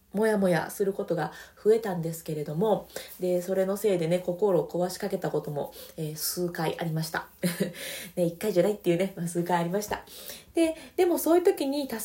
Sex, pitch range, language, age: female, 170-220 Hz, Japanese, 20-39